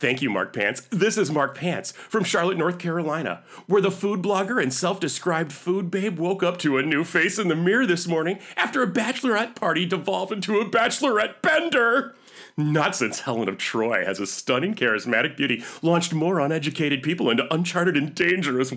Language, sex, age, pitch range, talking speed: English, male, 30-49, 130-185 Hz, 185 wpm